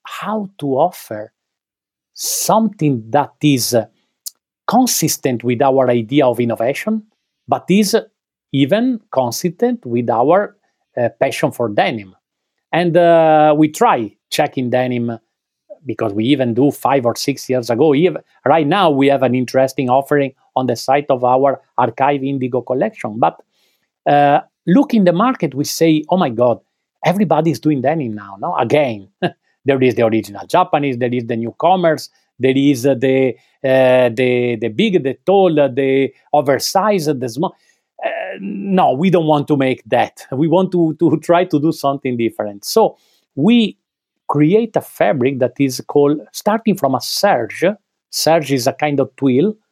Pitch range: 125-175 Hz